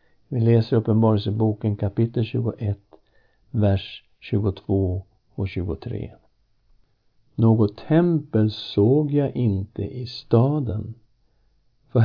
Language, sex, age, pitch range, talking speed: Swedish, male, 60-79, 105-130 Hz, 85 wpm